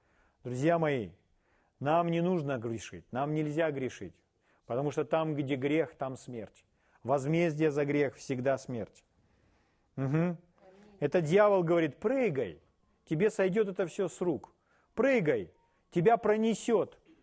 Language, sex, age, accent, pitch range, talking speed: Russian, male, 40-59, native, 135-190 Hz, 120 wpm